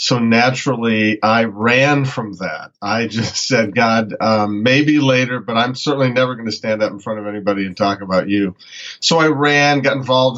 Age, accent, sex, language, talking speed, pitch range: 40-59, American, male, English, 195 wpm, 110-140 Hz